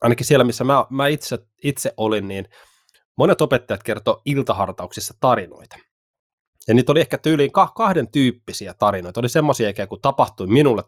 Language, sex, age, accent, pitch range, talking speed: Finnish, male, 20-39, native, 105-140 Hz, 150 wpm